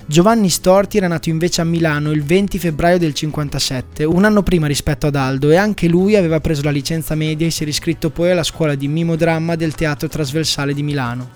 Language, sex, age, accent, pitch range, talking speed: Italian, male, 20-39, native, 145-175 Hz, 210 wpm